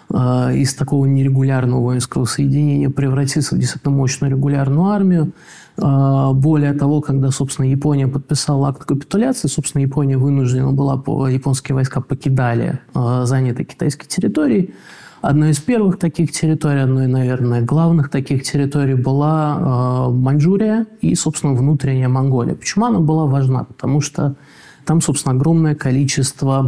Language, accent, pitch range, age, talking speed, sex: Russian, native, 135-155 Hz, 20-39, 125 wpm, male